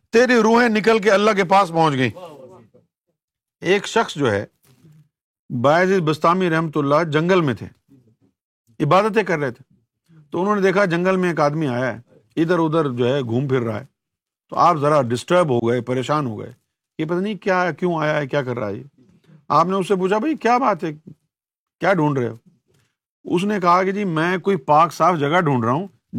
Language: Urdu